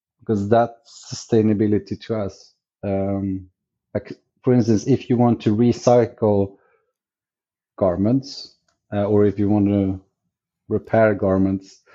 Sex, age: male, 30-49